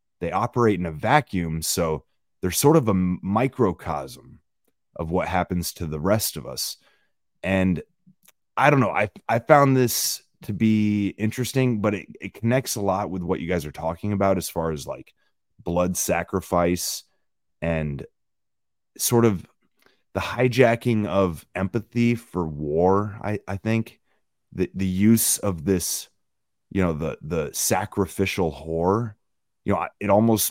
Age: 30-49